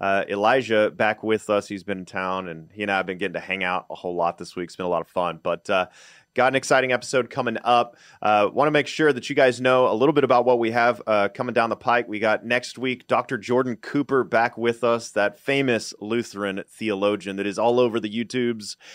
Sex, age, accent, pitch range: male, 30-49, American, 105-125 Hz